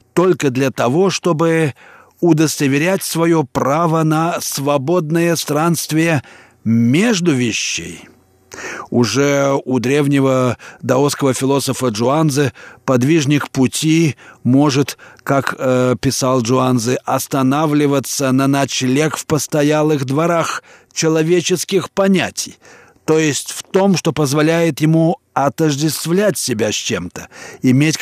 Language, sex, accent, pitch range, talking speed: Russian, male, native, 130-160 Hz, 95 wpm